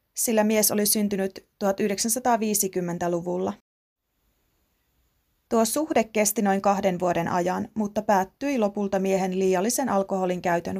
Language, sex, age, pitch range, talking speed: Finnish, female, 30-49, 185-225 Hz, 105 wpm